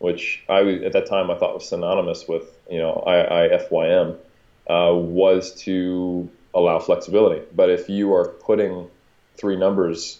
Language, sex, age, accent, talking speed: English, male, 30-49, American, 160 wpm